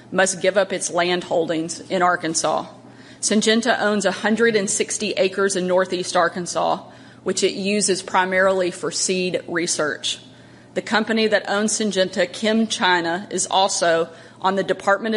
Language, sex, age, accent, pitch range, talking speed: English, female, 30-49, American, 175-200 Hz, 135 wpm